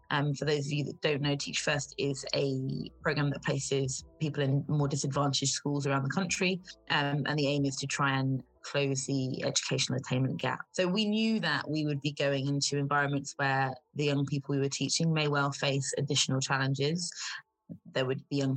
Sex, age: female, 20-39